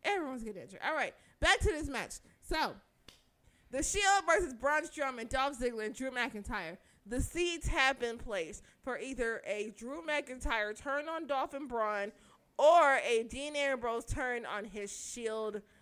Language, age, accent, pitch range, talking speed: English, 20-39, American, 215-265 Hz, 165 wpm